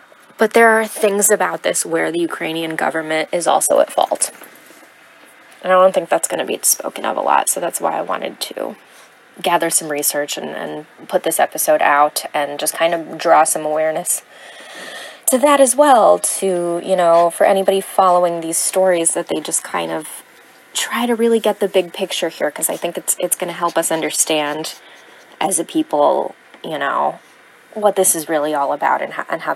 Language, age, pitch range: English, 20-39, 170-235 Hz